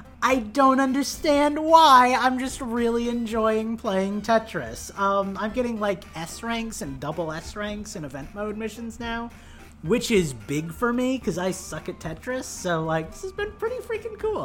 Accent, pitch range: American, 170-235 Hz